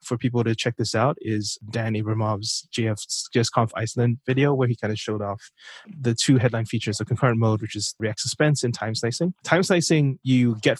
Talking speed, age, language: 200 wpm, 20-39, English